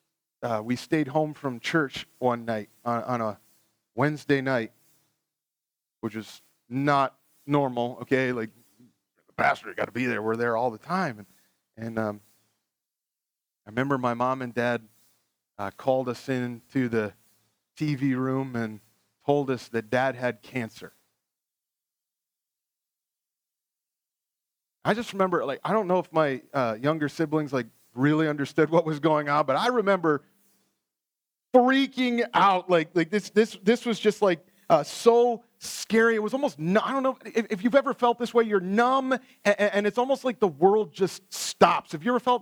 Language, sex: English, male